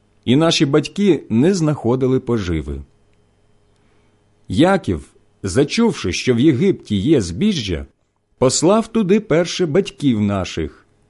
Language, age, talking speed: Ukrainian, 50-69, 95 wpm